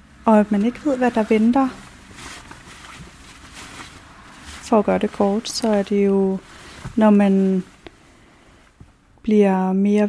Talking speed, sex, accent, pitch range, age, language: 125 wpm, female, native, 195-225 Hz, 30-49, Danish